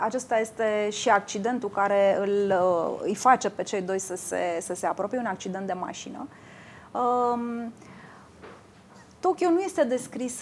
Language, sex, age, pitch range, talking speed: English, female, 20-39, 195-245 Hz, 130 wpm